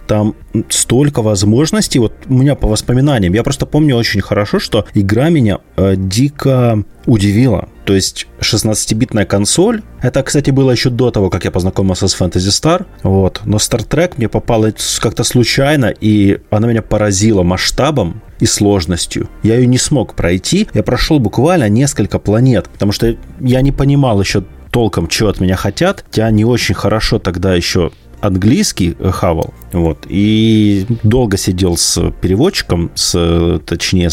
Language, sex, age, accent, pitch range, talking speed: Russian, male, 30-49, native, 95-125 Hz, 155 wpm